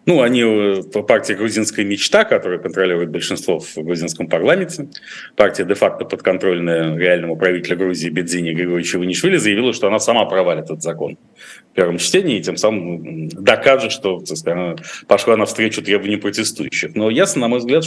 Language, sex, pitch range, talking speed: Russian, male, 90-110 Hz, 155 wpm